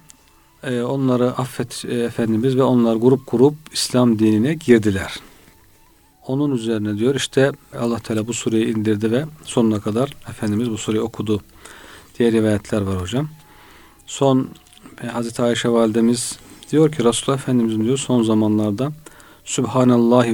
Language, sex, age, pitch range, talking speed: Turkish, male, 40-59, 110-130 Hz, 125 wpm